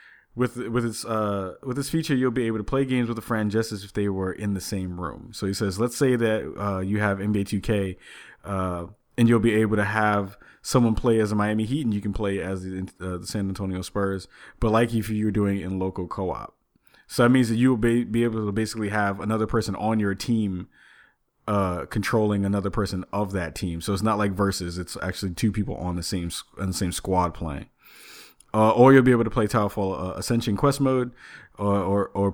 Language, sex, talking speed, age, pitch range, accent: English, male, 230 wpm, 20-39, 95-115 Hz, American